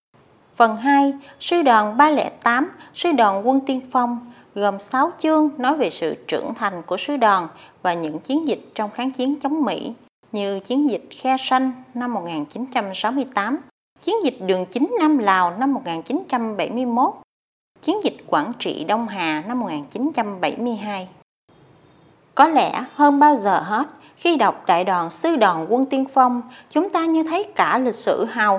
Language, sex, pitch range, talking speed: Vietnamese, female, 230-300 Hz, 160 wpm